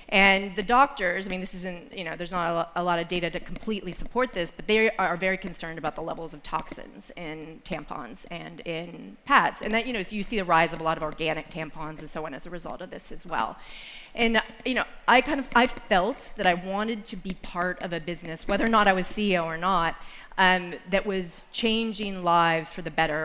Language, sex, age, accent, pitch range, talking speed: English, female, 30-49, American, 170-205 Hz, 225 wpm